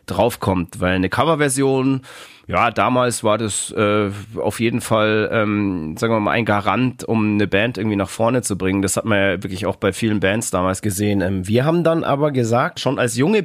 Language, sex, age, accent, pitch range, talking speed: German, male, 30-49, German, 105-135 Hz, 205 wpm